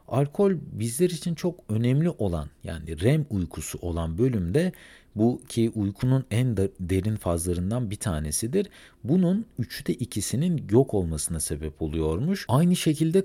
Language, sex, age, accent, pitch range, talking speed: Turkish, male, 50-69, native, 95-155 Hz, 125 wpm